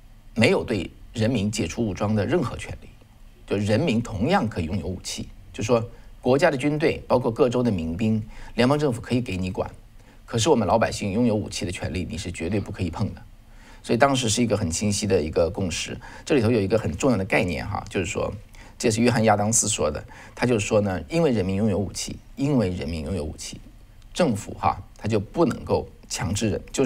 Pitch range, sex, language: 100-115 Hz, male, Chinese